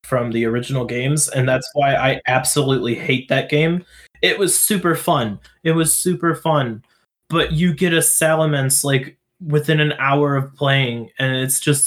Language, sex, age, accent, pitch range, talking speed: English, male, 20-39, American, 125-155 Hz, 170 wpm